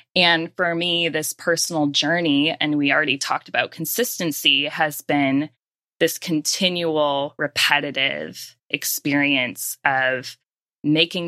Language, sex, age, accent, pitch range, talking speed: English, female, 20-39, American, 150-185 Hz, 105 wpm